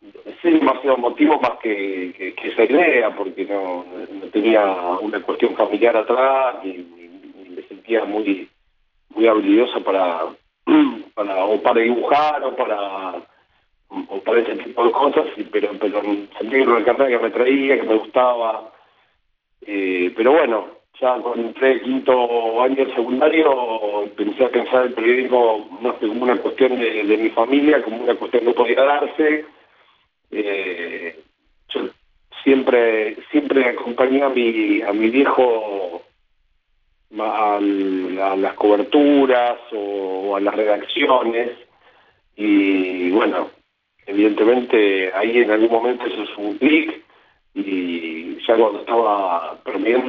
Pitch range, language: 100-135 Hz, Spanish